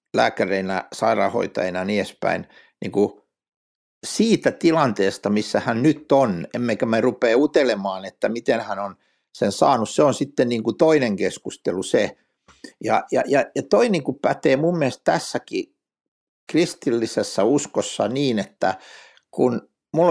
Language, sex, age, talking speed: Finnish, male, 60-79, 135 wpm